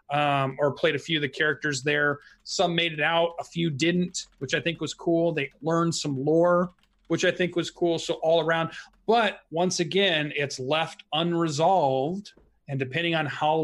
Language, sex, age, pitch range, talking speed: English, male, 30-49, 140-170 Hz, 190 wpm